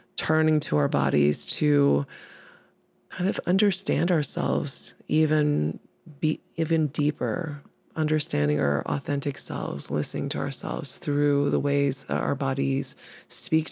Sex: female